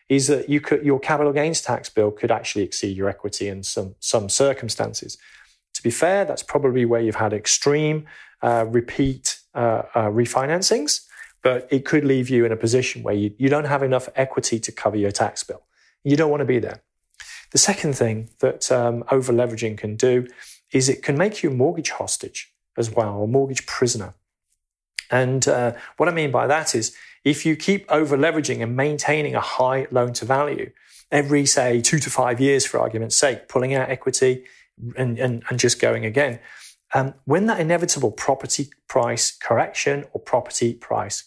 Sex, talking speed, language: male, 175 wpm, English